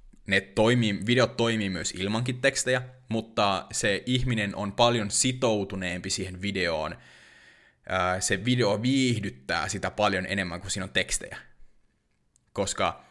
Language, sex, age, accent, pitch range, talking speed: Finnish, male, 20-39, native, 95-125 Hz, 120 wpm